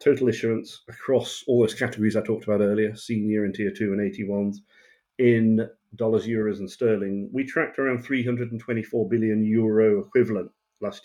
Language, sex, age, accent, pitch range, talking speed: English, male, 40-59, British, 105-125 Hz, 155 wpm